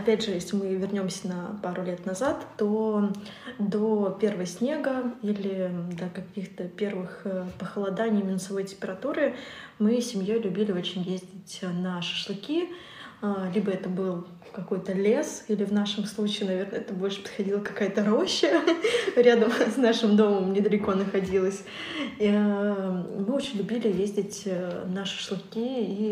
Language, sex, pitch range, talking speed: Russian, female, 185-215 Hz, 130 wpm